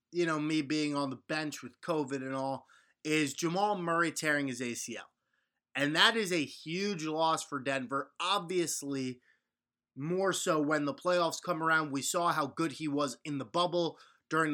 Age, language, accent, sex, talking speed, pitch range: 20-39, English, American, male, 180 wpm, 150-185 Hz